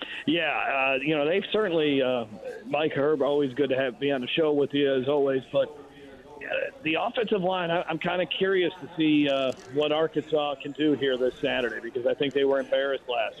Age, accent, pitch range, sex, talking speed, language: 40-59, American, 135-170 Hz, male, 215 wpm, English